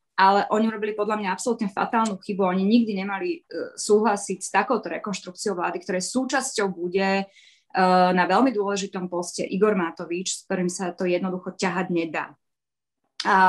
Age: 20-39